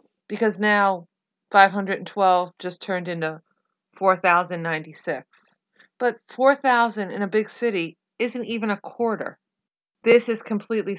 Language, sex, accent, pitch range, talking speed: English, female, American, 185-220 Hz, 110 wpm